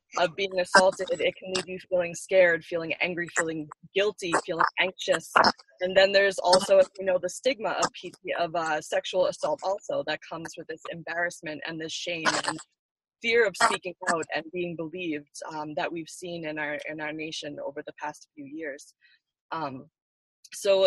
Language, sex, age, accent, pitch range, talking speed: English, female, 20-39, American, 155-185 Hz, 175 wpm